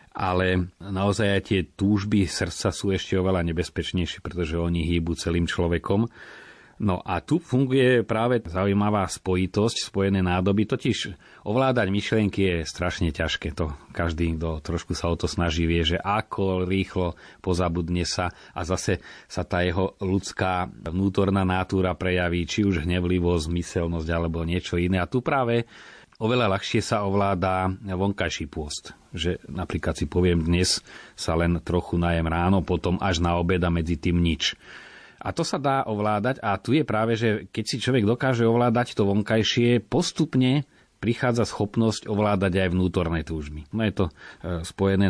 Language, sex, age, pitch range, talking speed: Slovak, male, 30-49, 85-105 Hz, 155 wpm